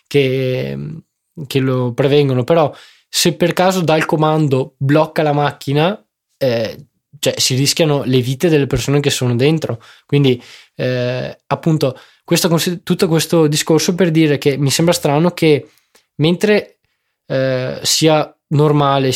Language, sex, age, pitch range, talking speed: Italian, male, 20-39, 130-160 Hz, 130 wpm